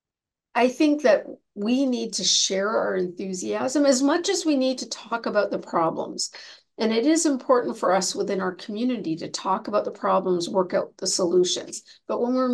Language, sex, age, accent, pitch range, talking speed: English, female, 50-69, American, 185-260 Hz, 190 wpm